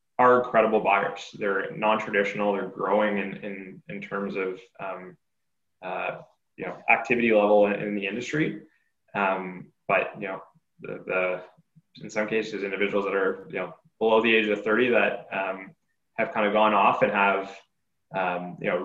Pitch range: 100-120 Hz